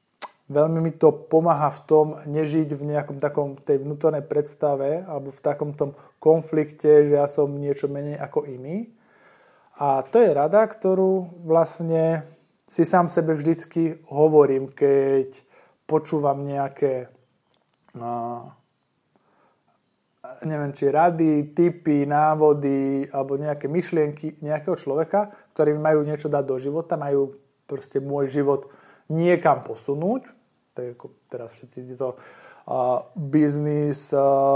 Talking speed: 115 wpm